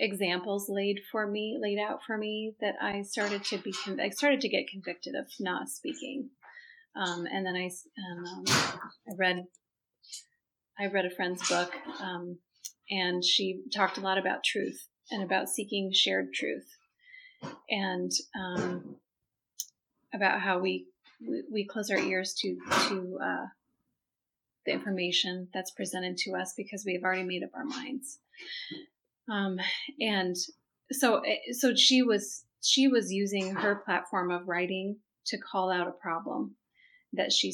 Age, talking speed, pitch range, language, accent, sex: 30-49, 150 wpm, 185-230 Hz, English, American, female